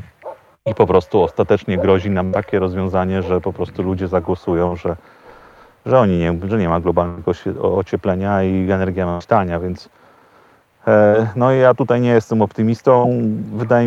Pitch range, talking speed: 95-115 Hz, 140 wpm